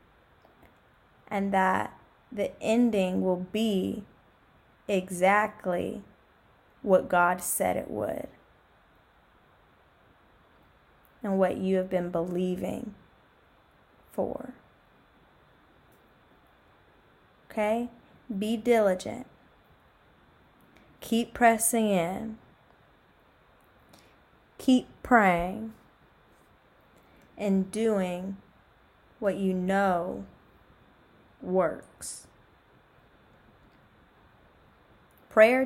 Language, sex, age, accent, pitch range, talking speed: English, female, 10-29, American, 185-225 Hz, 55 wpm